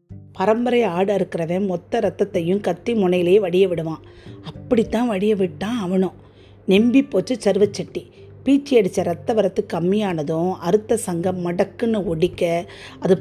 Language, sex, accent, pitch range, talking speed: Tamil, female, native, 180-215 Hz, 120 wpm